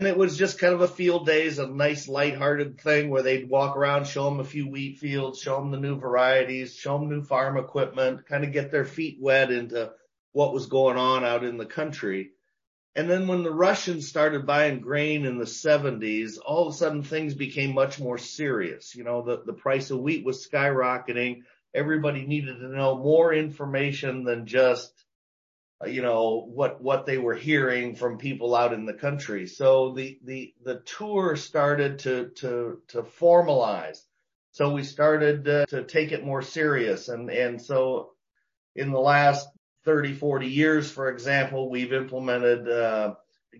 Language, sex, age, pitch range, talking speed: English, male, 40-59, 125-145 Hz, 180 wpm